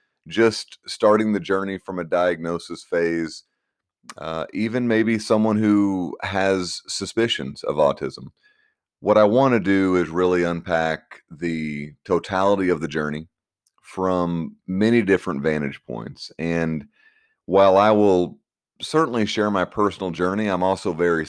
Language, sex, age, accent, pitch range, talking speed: English, male, 30-49, American, 85-105 Hz, 130 wpm